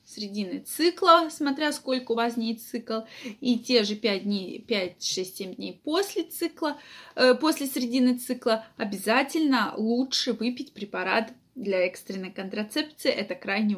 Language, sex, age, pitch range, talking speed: Russian, female, 20-39, 220-275 Hz, 135 wpm